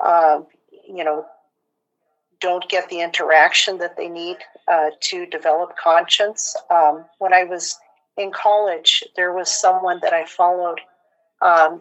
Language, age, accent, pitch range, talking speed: English, 50-69, American, 165-195 Hz, 135 wpm